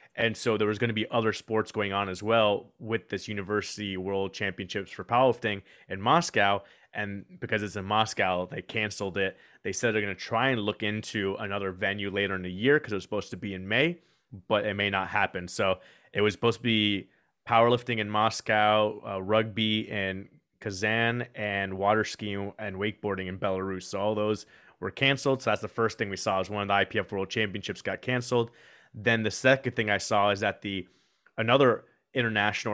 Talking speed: 200 wpm